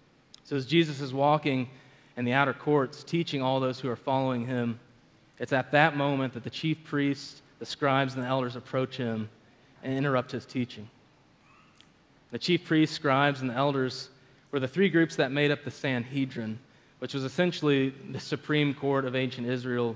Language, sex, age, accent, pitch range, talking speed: English, male, 20-39, American, 125-145 Hz, 180 wpm